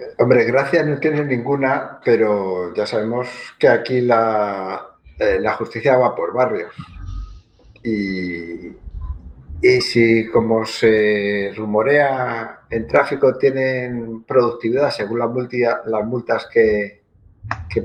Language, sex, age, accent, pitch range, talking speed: Spanish, male, 50-69, Spanish, 100-140 Hz, 115 wpm